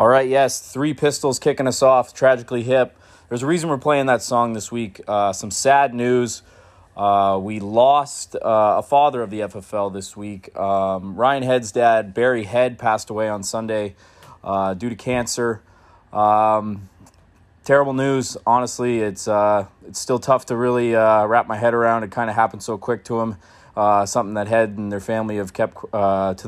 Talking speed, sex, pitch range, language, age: 190 wpm, male, 105-125 Hz, English, 20-39